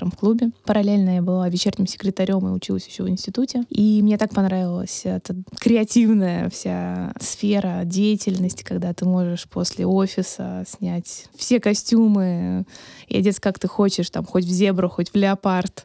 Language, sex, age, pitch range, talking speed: Russian, female, 20-39, 180-210 Hz, 155 wpm